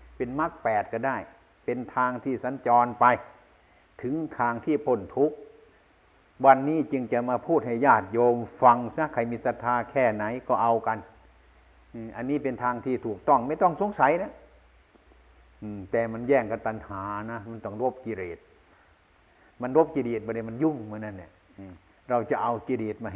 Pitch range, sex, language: 100-130 Hz, male, Thai